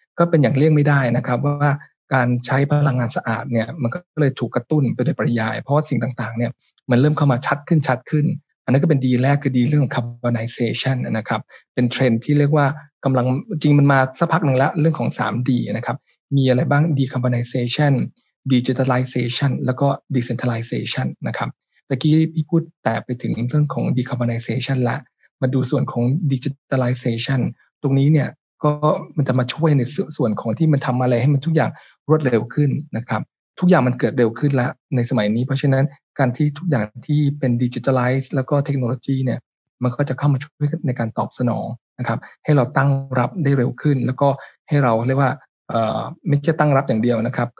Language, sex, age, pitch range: Thai, male, 20-39, 125-145 Hz